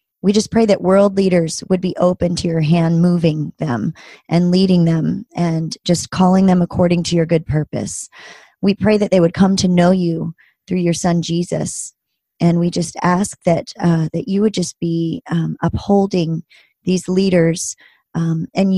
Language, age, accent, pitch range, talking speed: English, 30-49, American, 165-190 Hz, 180 wpm